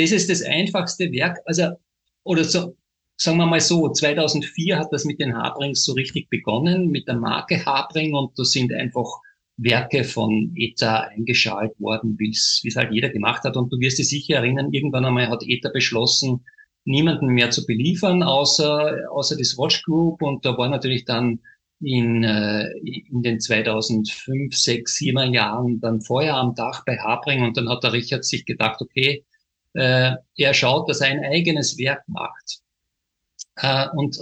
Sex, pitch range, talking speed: male, 120-150 Hz, 165 wpm